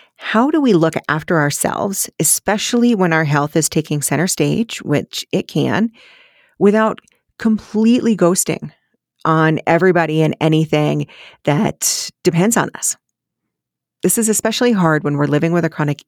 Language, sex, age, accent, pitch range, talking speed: English, female, 40-59, American, 155-215 Hz, 140 wpm